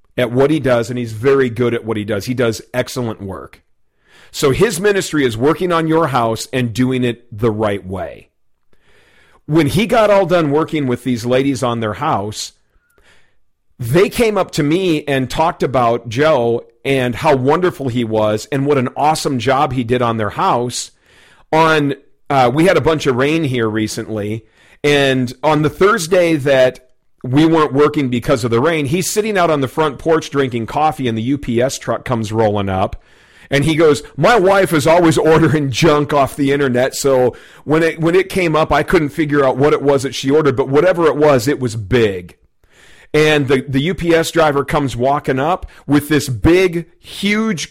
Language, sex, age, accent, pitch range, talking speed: English, male, 40-59, American, 125-160 Hz, 190 wpm